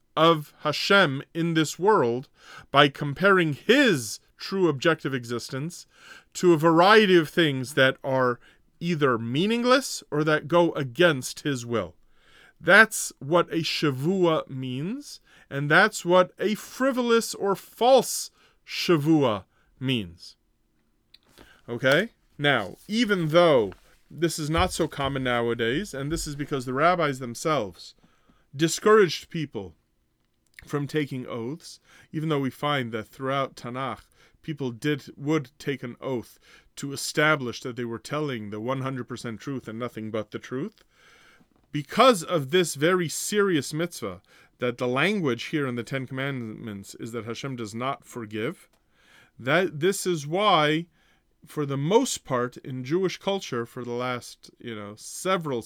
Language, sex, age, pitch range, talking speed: English, male, 30-49, 125-170 Hz, 135 wpm